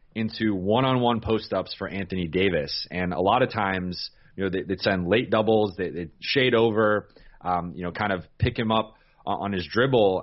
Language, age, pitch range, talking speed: English, 30-49, 95-115 Hz, 180 wpm